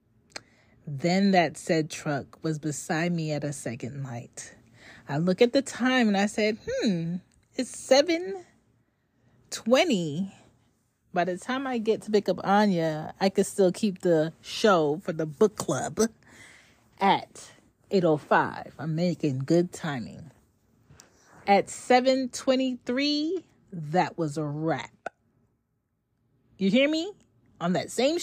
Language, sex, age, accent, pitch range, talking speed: English, female, 30-49, American, 130-215 Hz, 130 wpm